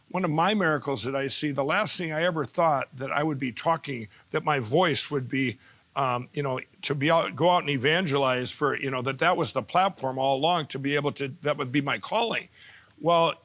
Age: 50-69